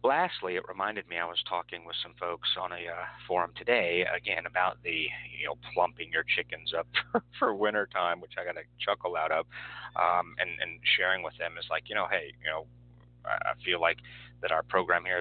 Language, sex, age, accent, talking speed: English, male, 40-59, American, 215 wpm